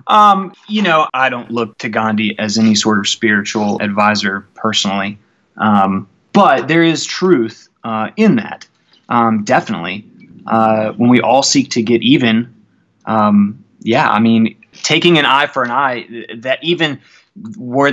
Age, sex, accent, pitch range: 20-39, male, American, 115-140 Hz